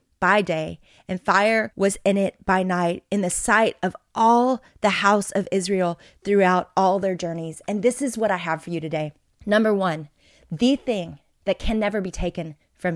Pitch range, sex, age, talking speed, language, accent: 185-230 Hz, female, 30-49, 190 wpm, English, American